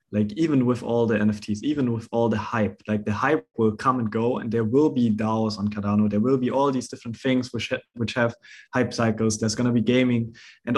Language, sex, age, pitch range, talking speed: English, male, 20-39, 110-125 Hz, 245 wpm